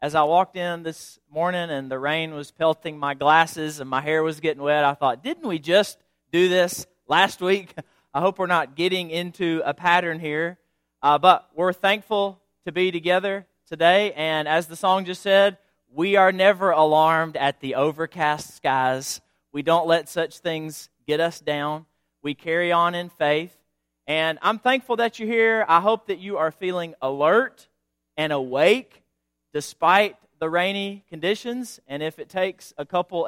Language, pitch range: English, 145-185 Hz